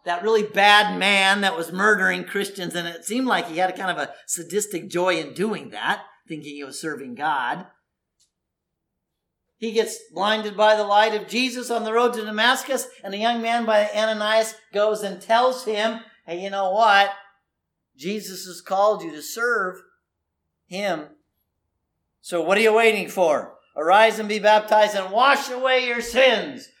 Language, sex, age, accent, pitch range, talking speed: English, male, 50-69, American, 195-250 Hz, 170 wpm